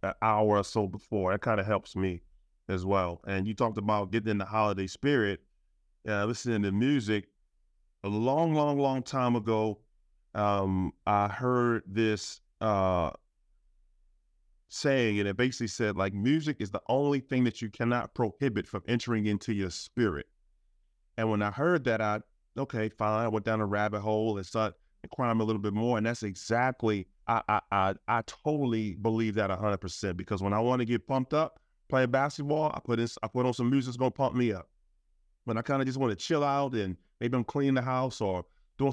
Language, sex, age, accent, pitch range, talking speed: English, male, 30-49, American, 100-125 Hz, 195 wpm